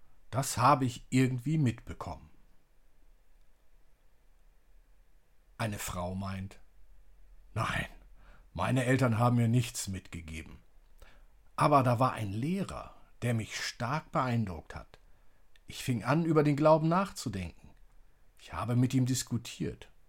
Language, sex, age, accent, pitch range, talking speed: German, male, 50-69, German, 105-145 Hz, 110 wpm